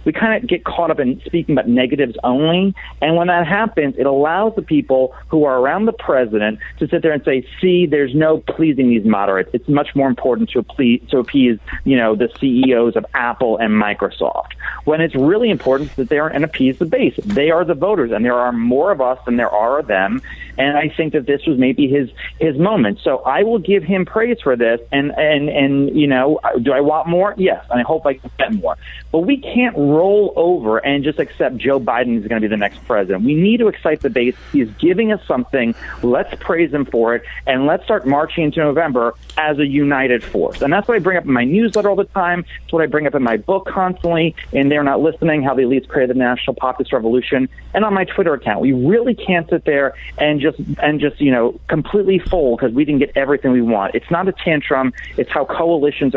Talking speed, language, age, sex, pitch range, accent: 235 wpm, English, 40-59, male, 125-170 Hz, American